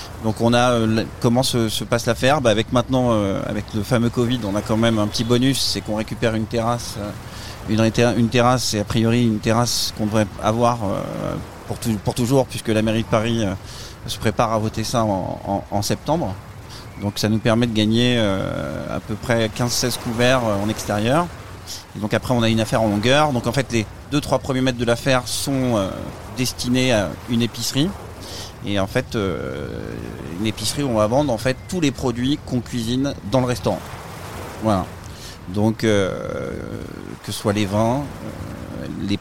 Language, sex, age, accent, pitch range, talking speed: French, male, 30-49, French, 105-125 Hz, 185 wpm